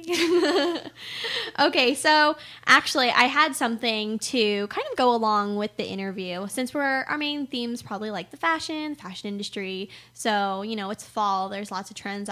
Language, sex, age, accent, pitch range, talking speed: English, female, 10-29, American, 205-265 Hz, 165 wpm